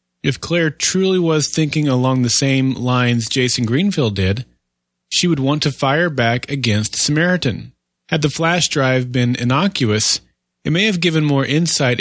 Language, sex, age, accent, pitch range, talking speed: English, male, 30-49, American, 115-155 Hz, 160 wpm